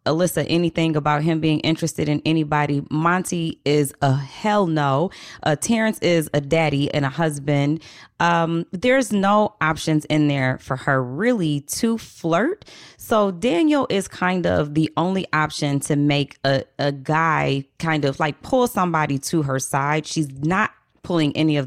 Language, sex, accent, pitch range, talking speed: English, female, American, 145-175 Hz, 160 wpm